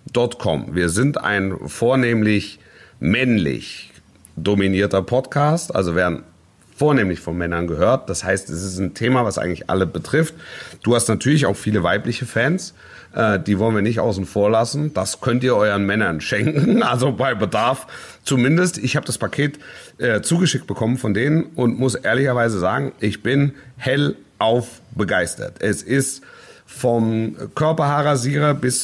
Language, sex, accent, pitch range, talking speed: German, male, German, 105-135 Hz, 145 wpm